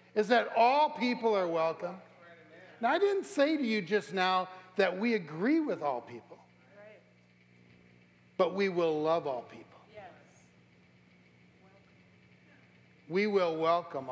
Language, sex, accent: English, male, American